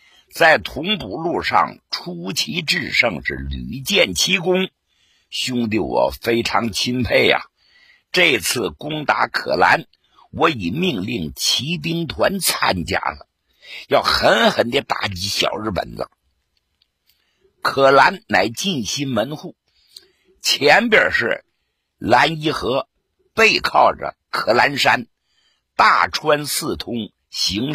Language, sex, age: Chinese, male, 50-69